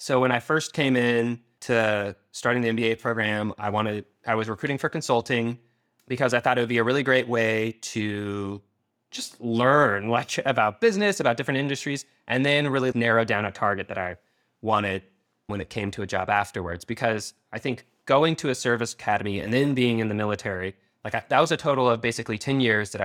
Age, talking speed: 20-39, 205 wpm